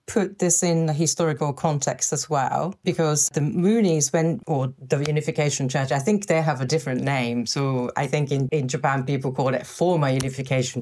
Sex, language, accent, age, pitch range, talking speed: female, English, British, 30-49, 130-165 Hz, 190 wpm